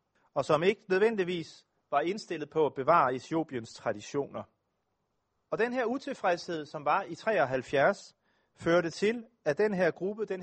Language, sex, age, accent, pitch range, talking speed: Danish, male, 30-49, native, 140-200 Hz, 150 wpm